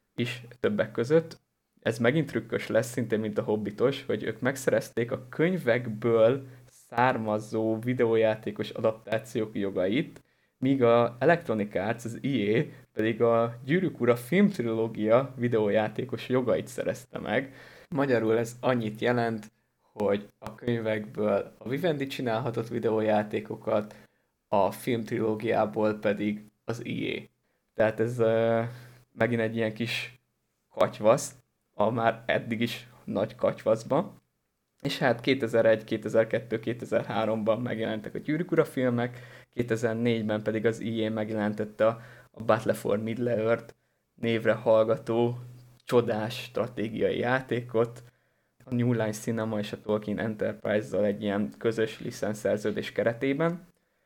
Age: 20-39